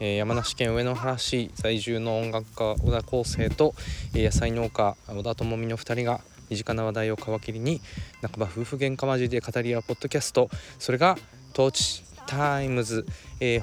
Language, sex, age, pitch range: Japanese, male, 20-39, 90-115 Hz